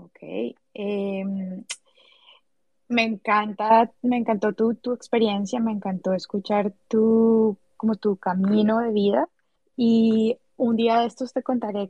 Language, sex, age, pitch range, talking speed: English, female, 20-39, 195-230 Hz, 125 wpm